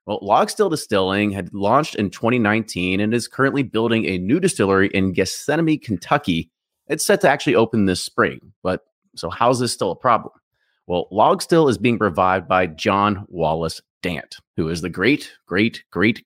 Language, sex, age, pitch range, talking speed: English, male, 30-49, 90-125 Hz, 175 wpm